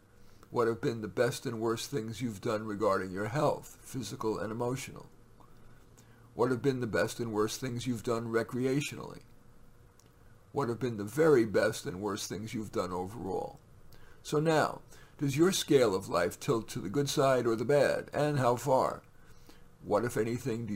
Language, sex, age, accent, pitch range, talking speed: English, male, 50-69, American, 110-140 Hz, 175 wpm